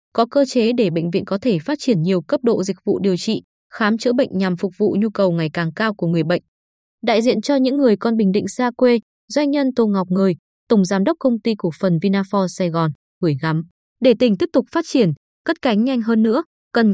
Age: 20-39